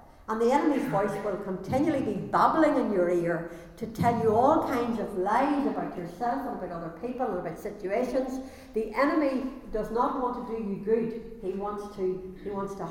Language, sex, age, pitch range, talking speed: English, female, 60-79, 185-245 Hz, 195 wpm